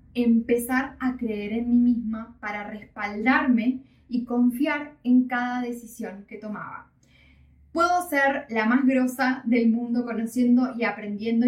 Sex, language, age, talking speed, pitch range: female, Spanish, 10-29, 130 wpm, 205-260 Hz